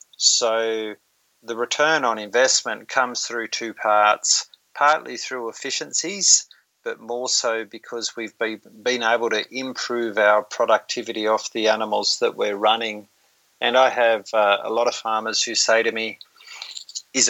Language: English